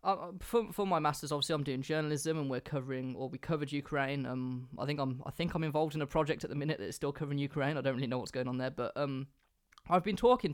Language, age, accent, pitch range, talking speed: English, 20-39, British, 125-155 Hz, 270 wpm